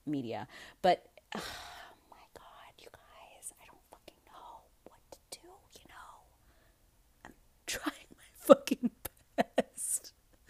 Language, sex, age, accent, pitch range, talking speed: English, female, 30-49, American, 150-180 Hz, 120 wpm